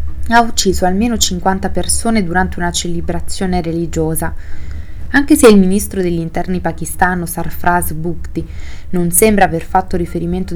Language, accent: Italian, native